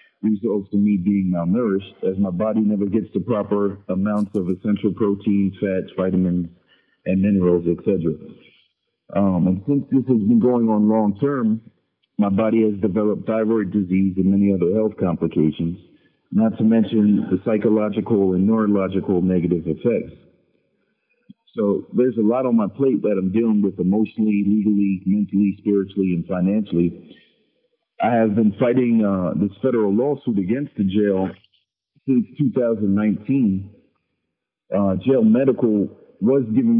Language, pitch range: English, 95-115 Hz